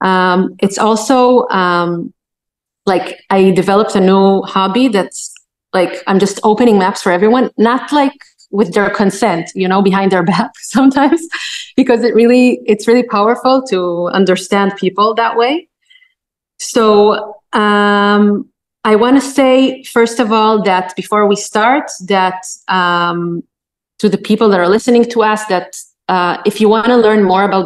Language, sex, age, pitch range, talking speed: Hebrew, female, 30-49, 190-225 Hz, 155 wpm